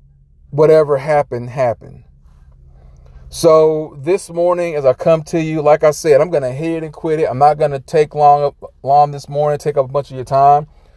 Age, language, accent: 30-49, English, American